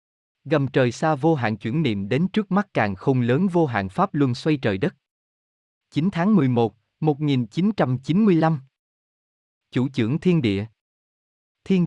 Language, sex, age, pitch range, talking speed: Vietnamese, male, 20-39, 115-160 Hz, 145 wpm